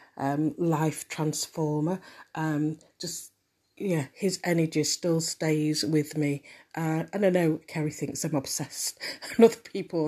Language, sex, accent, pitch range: English, female, British, 150-175 Hz